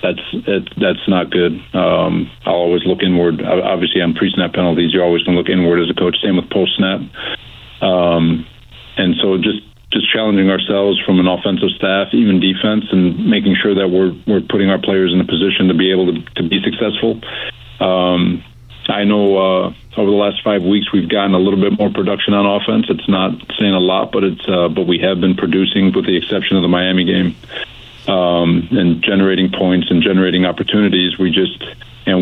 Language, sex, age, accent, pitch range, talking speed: English, male, 50-69, American, 90-100 Hz, 200 wpm